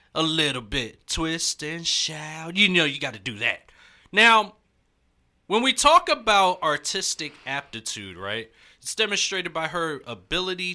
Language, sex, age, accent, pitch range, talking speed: English, male, 30-49, American, 120-185 Hz, 145 wpm